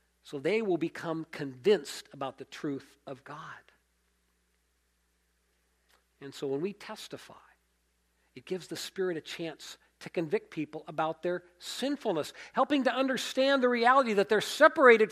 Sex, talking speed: male, 140 wpm